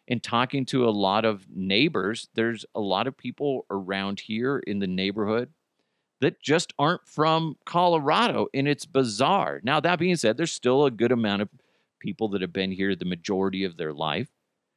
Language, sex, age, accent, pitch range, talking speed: English, male, 40-59, American, 105-145 Hz, 185 wpm